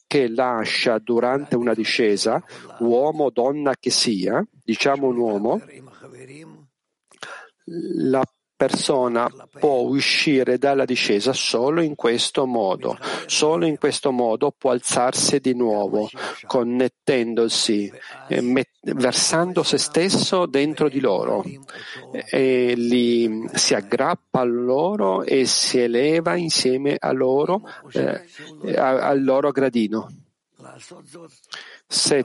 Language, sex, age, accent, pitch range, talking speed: Italian, male, 50-69, native, 120-160 Hz, 105 wpm